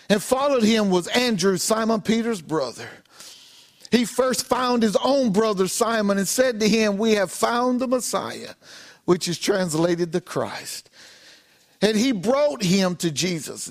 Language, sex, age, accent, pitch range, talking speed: English, male, 50-69, American, 195-250 Hz, 155 wpm